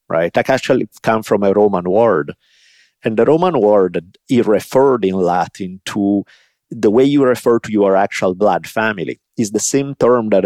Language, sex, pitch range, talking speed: English, male, 95-110 Hz, 170 wpm